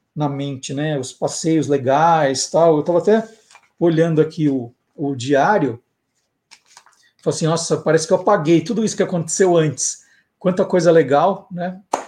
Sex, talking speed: male, 160 wpm